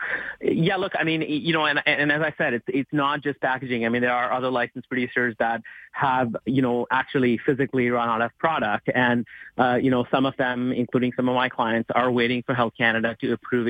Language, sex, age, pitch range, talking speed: English, male, 30-49, 115-135 Hz, 230 wpm